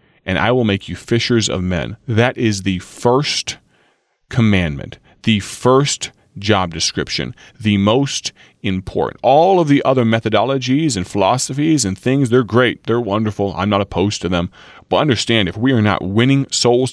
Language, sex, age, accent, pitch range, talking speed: English, male, 30-49, American, 90-115 Hz, 165 wpm